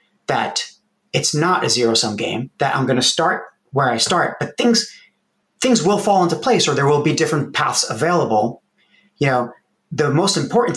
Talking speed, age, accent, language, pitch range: 185 wpm, 30-49, American, English, 115-150 Hz